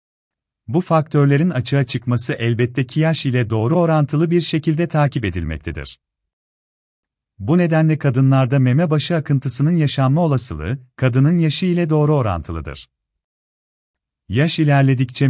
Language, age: Turkish, 40-59